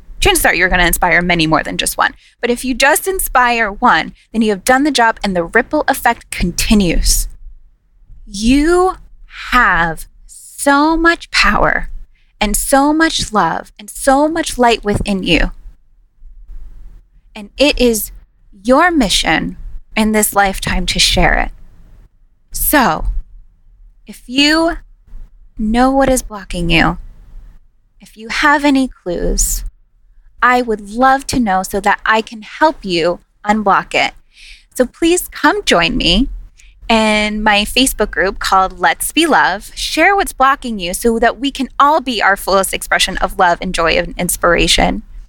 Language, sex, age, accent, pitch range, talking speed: English, female, 10-29, American, 180-260 Hz, 150 wpm